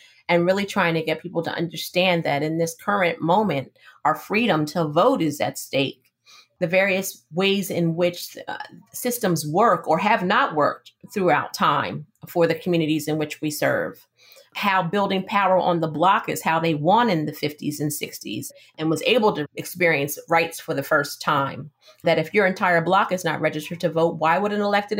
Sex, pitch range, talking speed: female, 155-195 Hz, 190 wpm